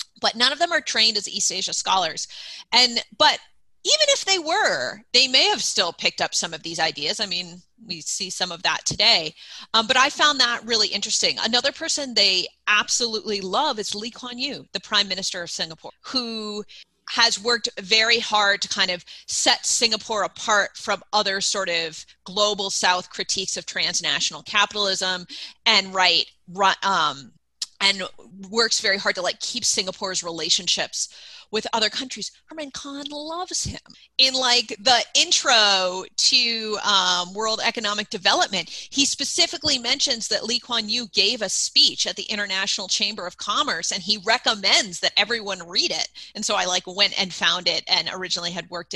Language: English